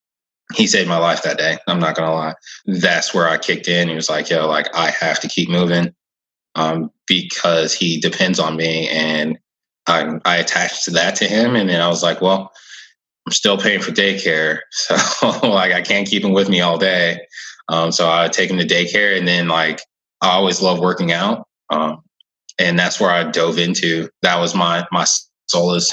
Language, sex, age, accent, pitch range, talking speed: English, male, 20-39, American, 80-95 Hz, 205 wpm